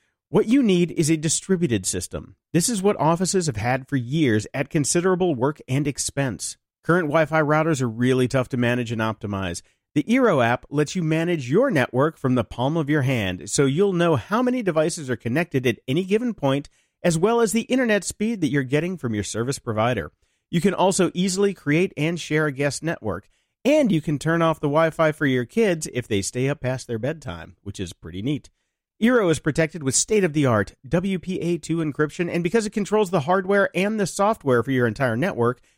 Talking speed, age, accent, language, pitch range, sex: 200 wpm, 40-59, American, English, 120-180 Hz, male